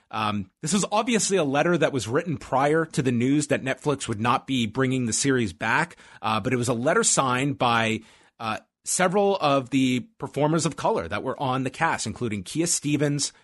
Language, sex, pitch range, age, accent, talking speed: English, male, 125-165 Hz, 30-49, American, 200 wpm